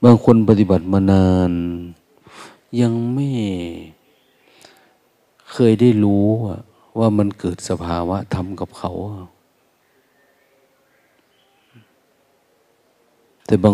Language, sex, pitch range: Thai, male, 90-115 Hz